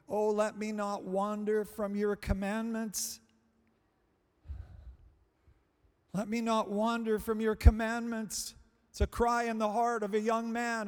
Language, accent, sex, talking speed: English, American, male, 140 wpm